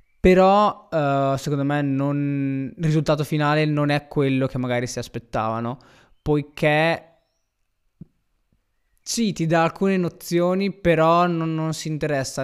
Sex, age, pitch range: male, 20-39, 135-160 Hz